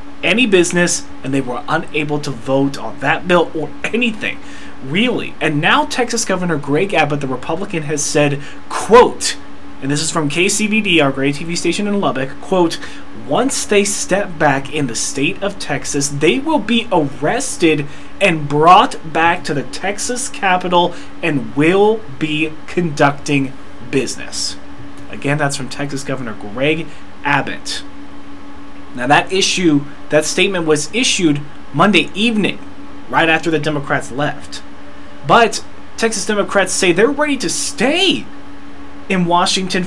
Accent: American